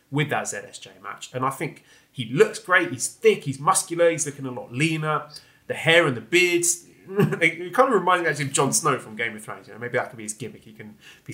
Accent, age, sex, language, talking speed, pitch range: British, 30-49, male, English, 255 wpm, 120-165 Hz